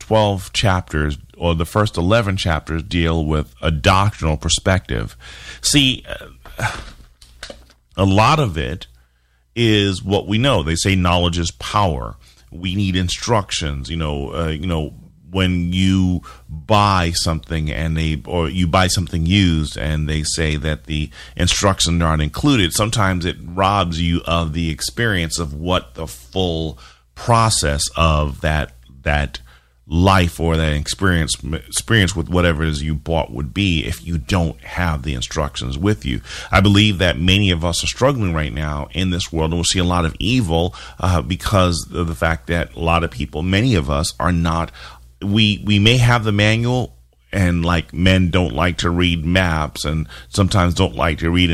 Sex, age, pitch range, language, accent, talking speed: male, 40-59, 75-95 Hz, English, American, 170 wpm